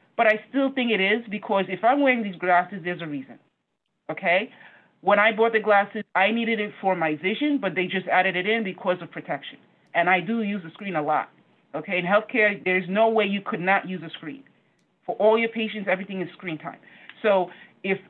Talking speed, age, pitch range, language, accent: 220 wpm, 30-49, 175-220 Hz, English, American